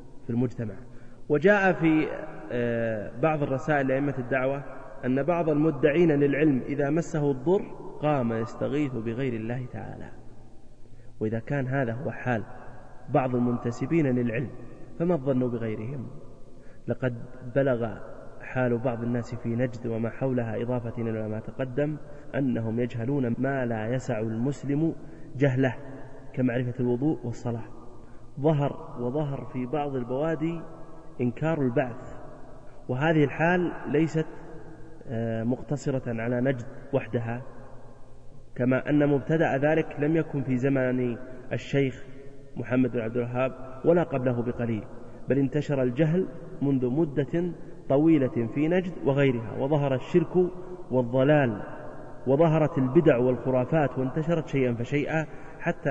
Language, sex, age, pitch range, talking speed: Arabic, male, 30-49, 120-150 Hz, 110 wpm